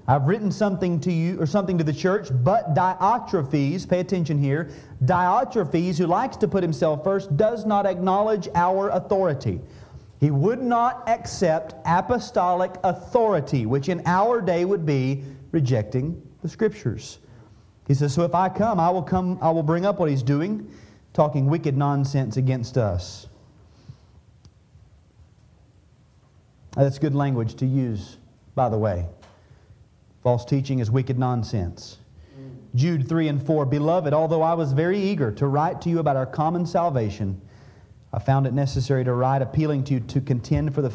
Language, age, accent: English, 40-59, American